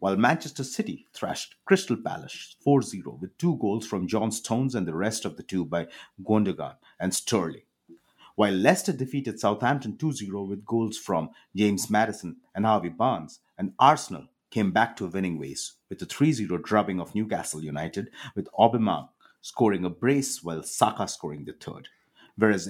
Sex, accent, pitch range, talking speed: male, Indian, 95-130 Hz, 165 wpm